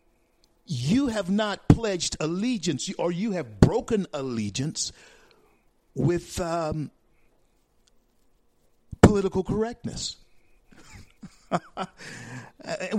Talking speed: 65 wpm